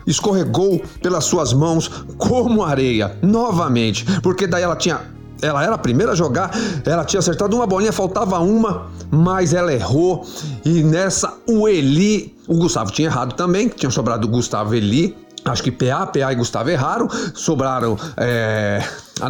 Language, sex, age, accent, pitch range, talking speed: Portuguese, male, 40-59, Brazilian, 140-205 Hz, 155 wpm